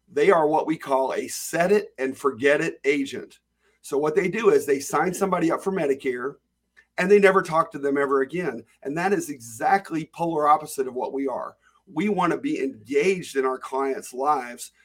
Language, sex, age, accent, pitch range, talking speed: English, male, 50-69, American, 135-175 Hz, 200 wpm